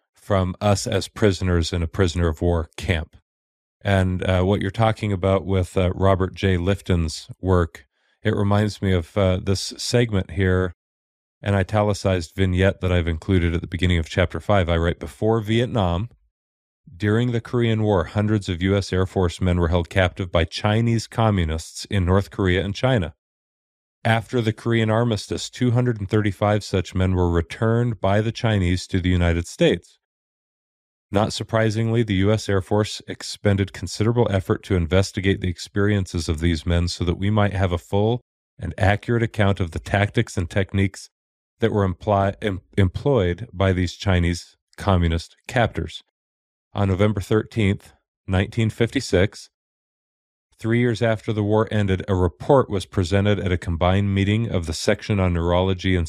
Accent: American